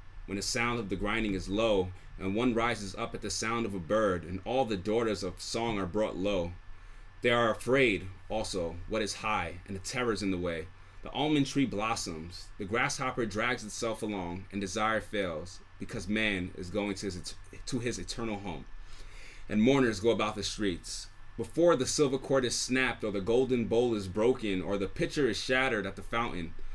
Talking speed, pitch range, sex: 195 wpm, 95-115 Hz, male